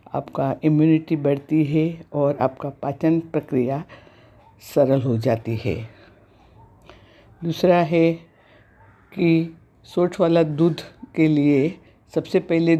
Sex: female